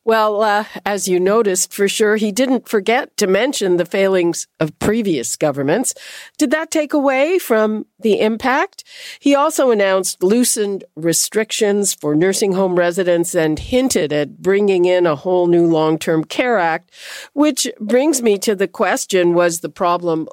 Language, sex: English, female